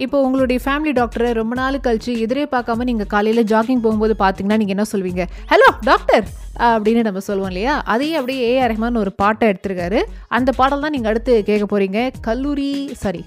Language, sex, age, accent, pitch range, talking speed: Tamil, female, 20-39, native, 210-275 Hz, 170 wpm